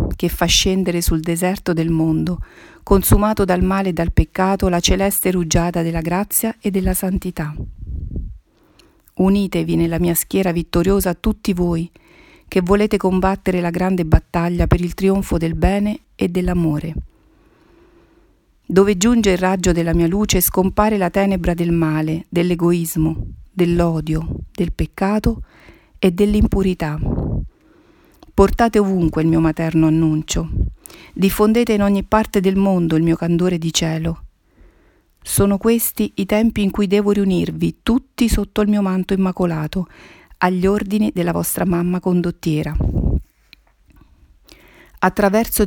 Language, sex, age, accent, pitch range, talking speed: Italian, female, 40-59, native, 165-200 Hz, 130 wpm